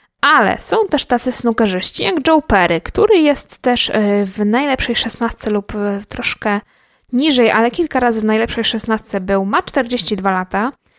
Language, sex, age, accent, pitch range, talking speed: Polish, female, 20-39, native, 210-265 Hz, 145 wpm